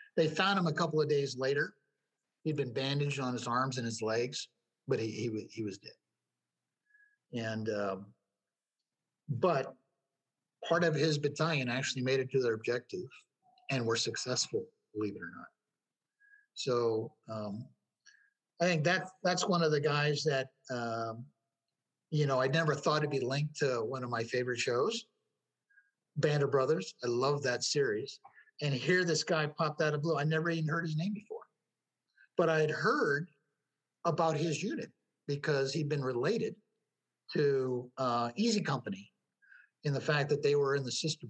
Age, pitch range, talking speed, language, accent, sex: 50-69, 125-170 Hz, 165 wpm, English, American, male